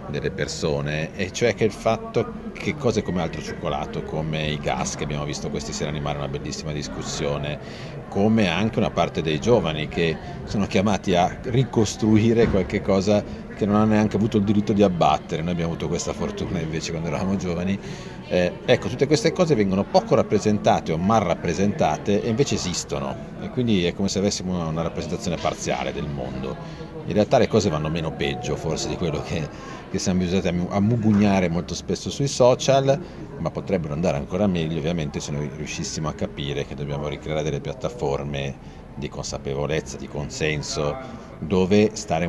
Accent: native